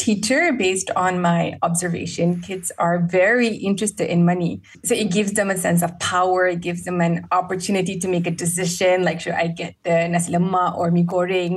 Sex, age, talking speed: female, 20-39, 185 wpm